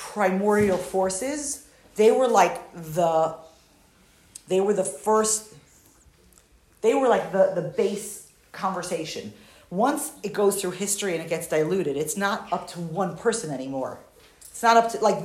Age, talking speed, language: 40-59, 150 wpm, English